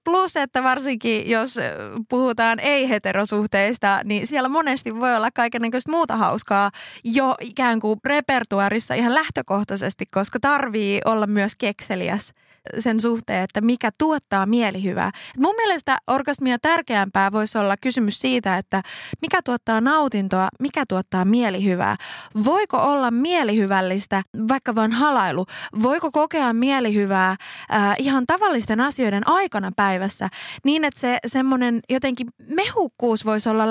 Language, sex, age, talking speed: Finnish, female, 20-39, 125 wpm